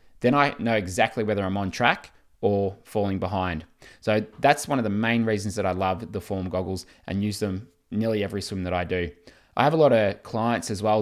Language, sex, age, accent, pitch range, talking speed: English, male, 20-39, Australian, 95-110 Hz, 225 wpm